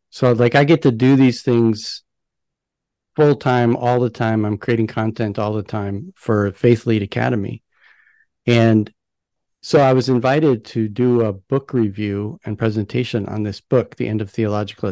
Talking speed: 170 wpm